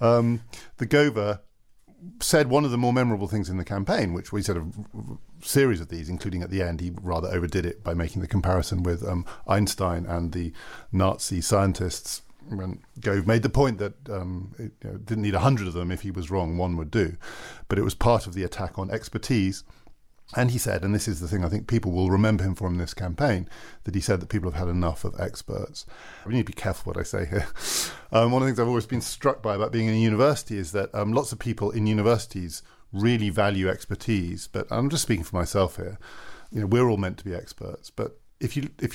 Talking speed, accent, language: 240 wpm, British, English